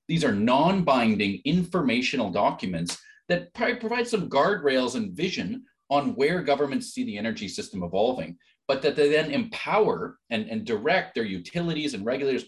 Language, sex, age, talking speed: English, male, 40-59, 155 wpm